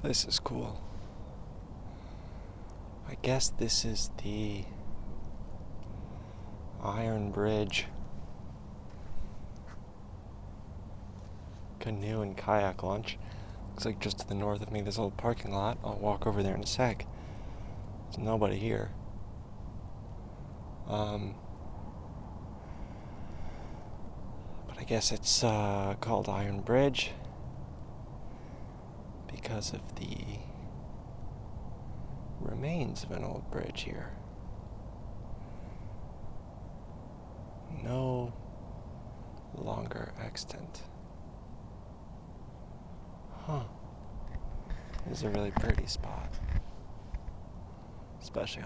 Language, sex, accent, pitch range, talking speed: English, male, American, 100-110 Hz, 80 wpm